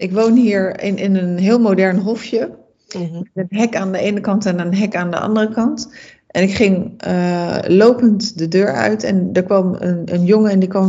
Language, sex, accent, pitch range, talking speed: Dutch, female, Dutch, 180-220 Hz, 220 wpm